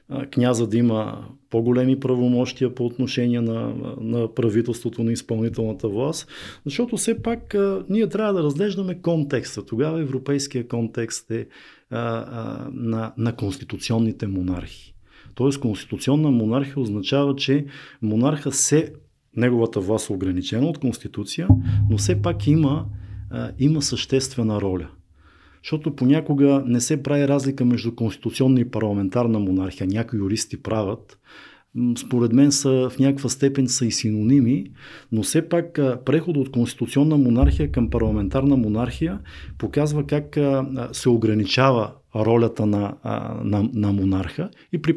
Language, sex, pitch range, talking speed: Bulgarian, male, 110-140 Hz, 130 wpm